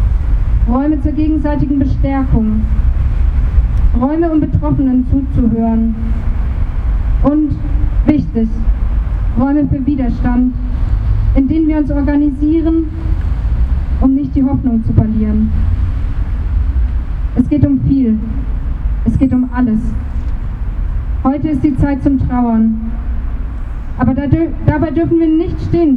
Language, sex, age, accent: German, female, 20-39, German